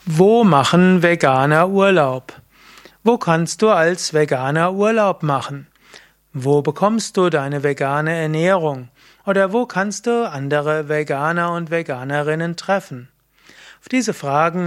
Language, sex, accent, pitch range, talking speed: German, male, German, 150-180 Hz, 120 wpm